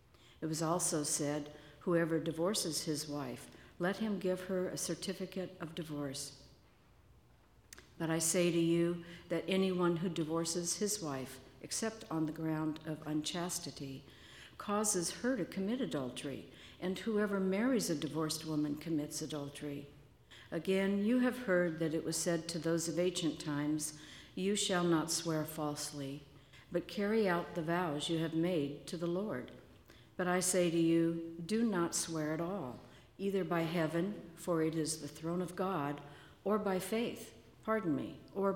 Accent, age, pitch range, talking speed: American, 60-79, 155-185 Hz, 155 wpm